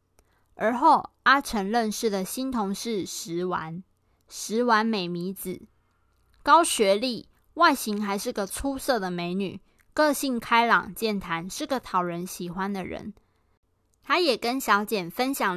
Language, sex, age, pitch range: Chinese, female, 20-39, 195-260 Hz